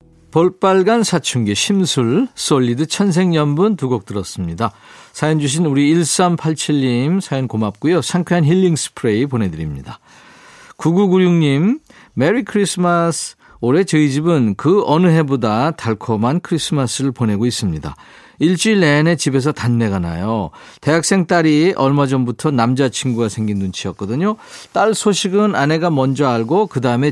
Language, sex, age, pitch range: Korean, male, 40-59, 120-170 Hz